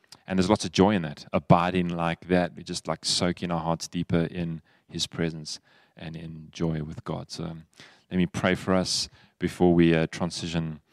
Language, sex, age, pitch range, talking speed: English, male, 20-39, 85-95 Hz, 190 wpm